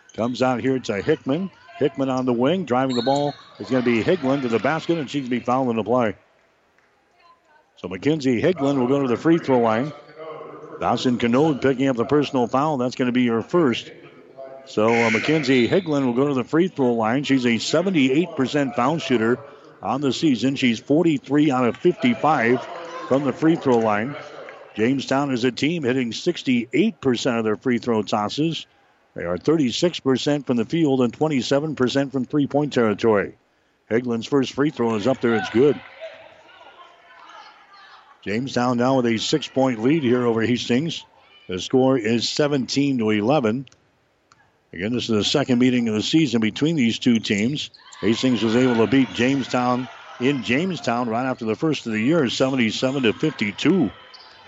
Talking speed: 170 wpm